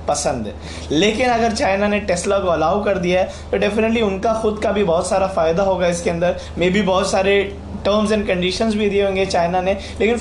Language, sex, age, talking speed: Hindi, male, 20-39, 220 wpm